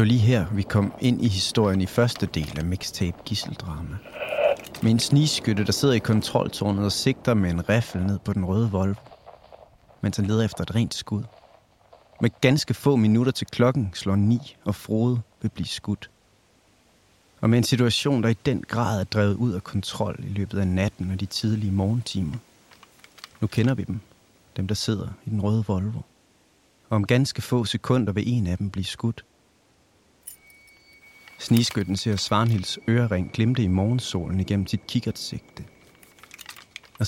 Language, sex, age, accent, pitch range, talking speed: Danish, male, 30-49, native, 100-120 Hz, 170 wpm